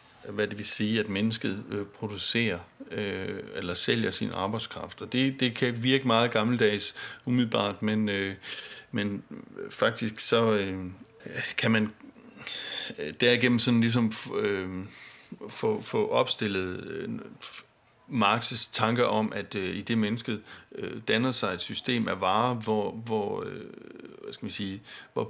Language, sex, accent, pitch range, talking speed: Danish, male, native, 100-125 Hz, 130 wpm